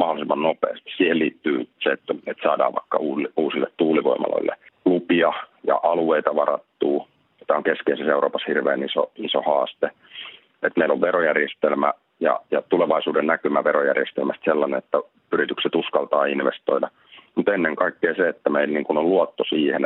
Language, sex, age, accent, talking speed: Finnish, male, 40-59, native, 135 wpm